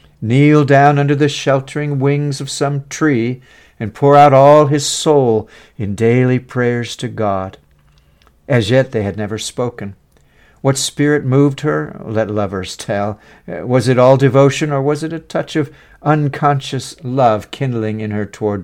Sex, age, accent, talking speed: male, 60-79, American, 160 wpm